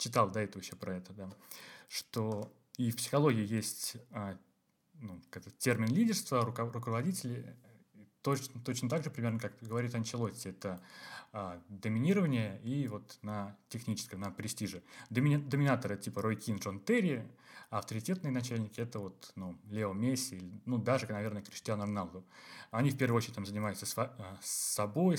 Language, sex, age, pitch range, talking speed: Russian, male, 20-39, 100-125 Hz, 145 wpm